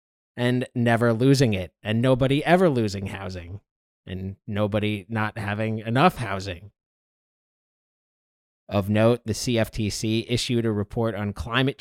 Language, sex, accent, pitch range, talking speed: English, male, American, 105-130 Hz, 120 wpm